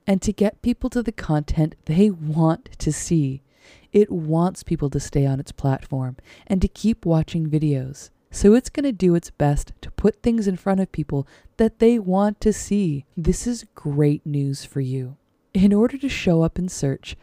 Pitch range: 145-200 Hz